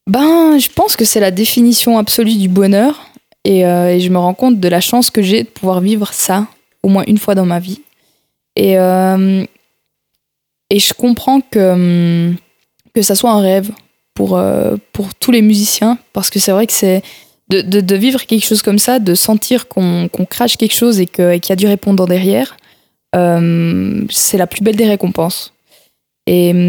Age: 20-39